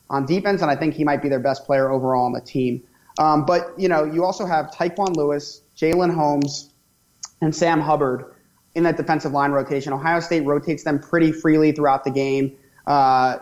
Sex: male